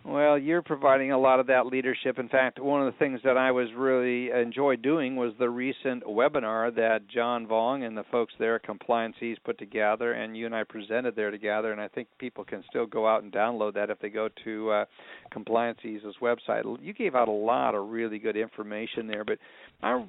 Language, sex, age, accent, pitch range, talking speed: English, male, 50-69, American, 115-150 Hz, 220 wpm